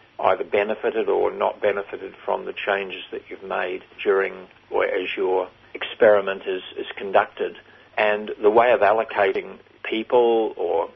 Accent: Australian